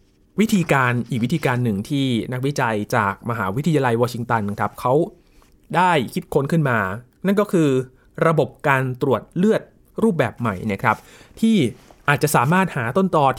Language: Thai